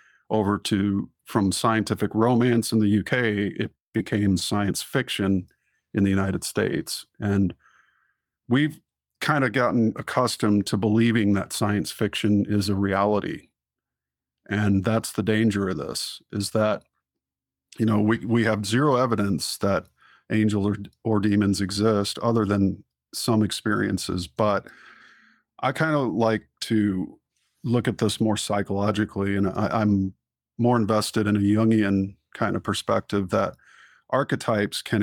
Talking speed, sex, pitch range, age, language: 135 wpm, male, 95-110 Hz, 50-69, English